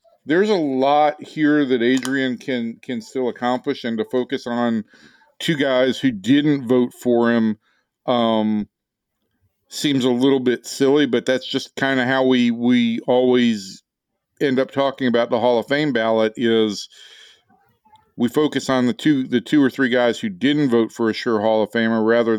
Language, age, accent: English, 50-69, American